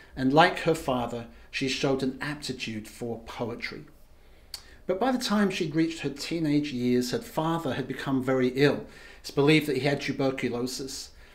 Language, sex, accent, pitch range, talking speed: English, male, British, 125-160 Hz, 165 wpm